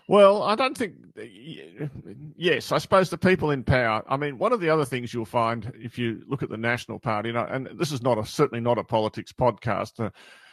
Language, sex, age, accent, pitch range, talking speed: English, male, 50-69, Australian, 110-130 Hz, 215 wpm